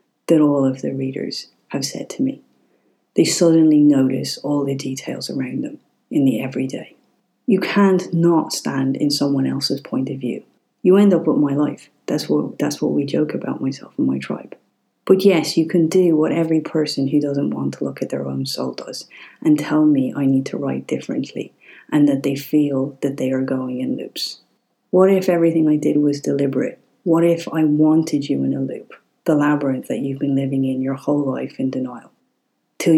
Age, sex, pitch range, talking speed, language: 40-59, female, 135-165 Hz, 200 wpm, English